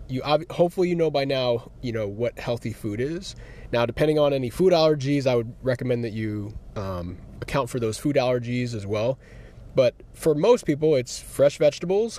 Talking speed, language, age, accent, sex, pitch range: 185 wpm, English, 20-39, American, male, 120-155 Hz